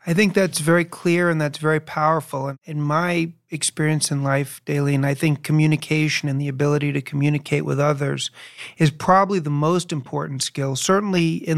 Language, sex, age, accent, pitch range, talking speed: English, male, 40-59, American, 135-160 Hz, 180 wpm